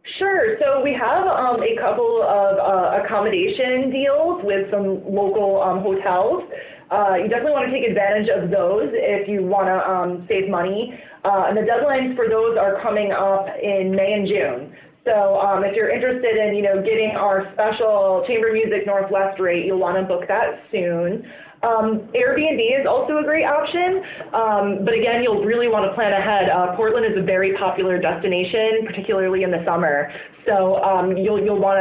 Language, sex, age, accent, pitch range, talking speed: English, female, 20-39, American, 185-225 Hz, 185 wpm